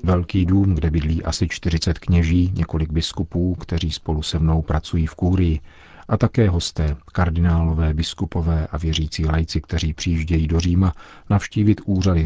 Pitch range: 80-95 Hz